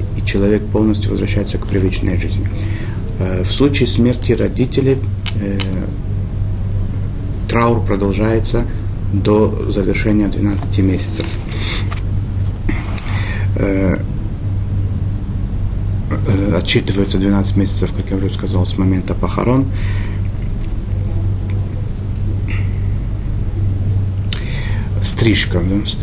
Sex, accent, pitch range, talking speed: male, native, 95-105 Hz, 65 wpm